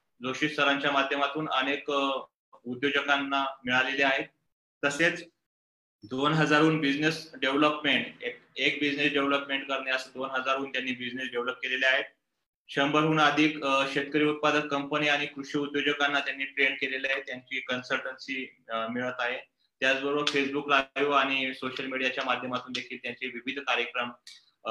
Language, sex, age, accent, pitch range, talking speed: English, male, 20-39, Indian, 130-145 Hz, 110 wpm